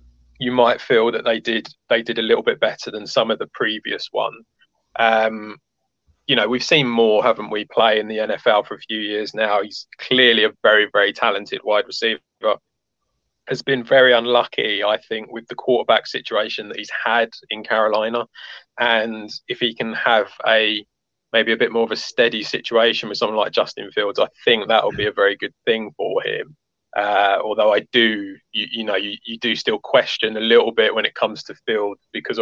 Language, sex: English, male